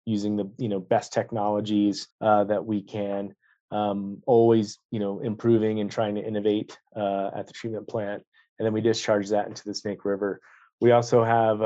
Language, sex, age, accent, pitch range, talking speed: English, male, 30-49, American, 100-115 Hz, 185 wpm